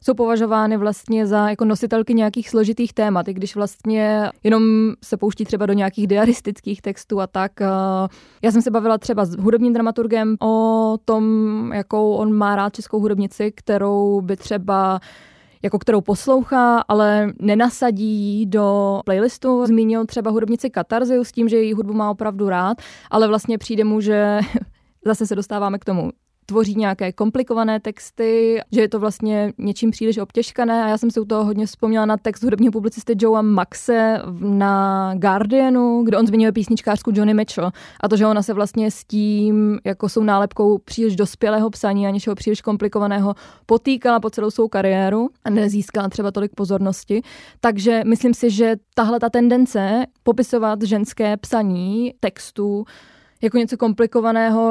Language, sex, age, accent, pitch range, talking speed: Czech, female, 20-39, native, 205-225 Hz, 160 wpm